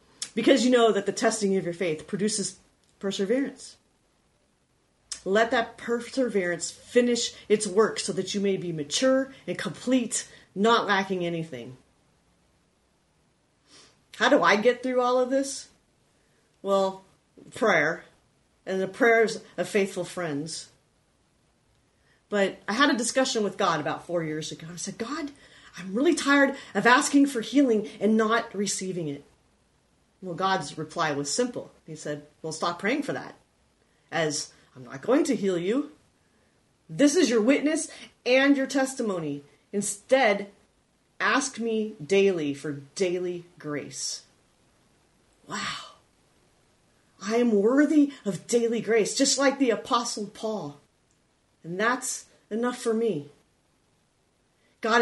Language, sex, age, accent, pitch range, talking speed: English, female, 40-59, American, 175-245 Hz, 130 wpm